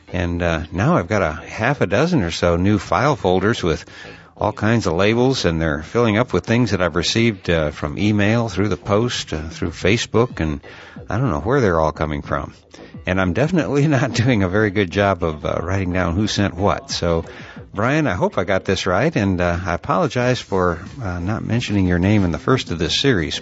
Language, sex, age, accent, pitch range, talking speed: English, male, 60-79, American, 85-110 Hz, 220 wpm